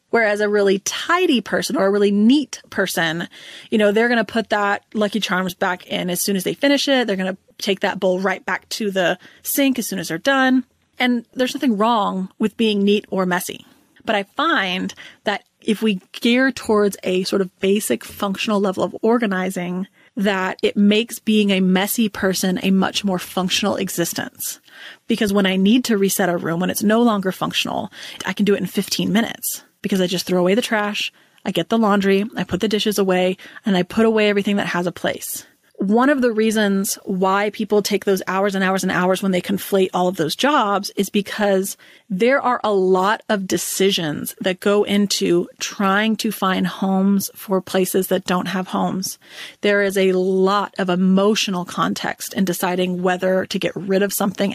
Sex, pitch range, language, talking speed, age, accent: female, 185-220 Hz, English, 200 wpm, 30-49, American